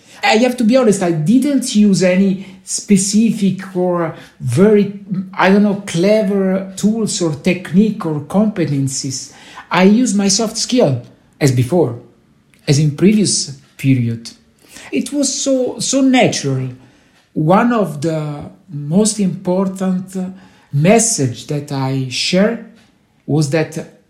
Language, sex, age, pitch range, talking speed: English, male, 60-79, 145-195 Hz, 120 wpm